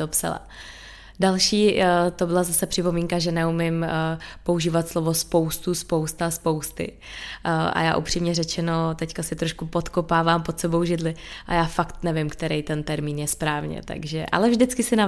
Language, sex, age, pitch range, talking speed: Czech, female, 20-39, 165-180 Hz, 150 wpm